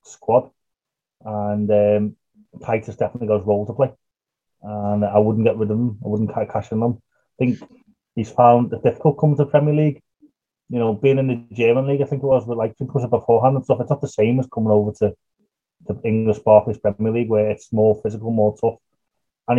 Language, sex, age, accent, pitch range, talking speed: English, male, 30-49, British, 110-145 Hz, 215 wpm